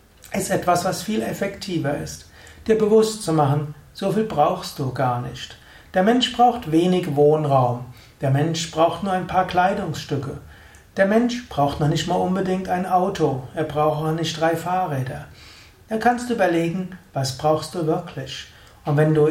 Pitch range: 150-190 Hz